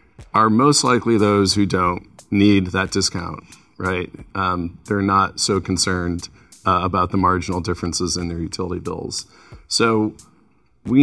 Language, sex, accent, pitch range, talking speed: English, male, American, 95-110 Hz, 140 wpm